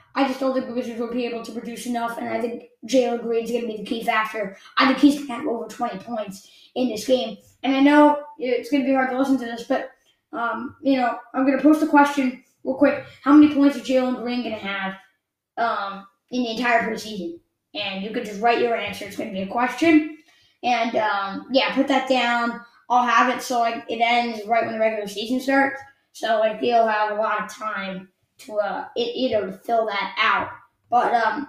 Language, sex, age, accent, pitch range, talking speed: English, female, 20-39, American, 235-275 Hz, 235 wpm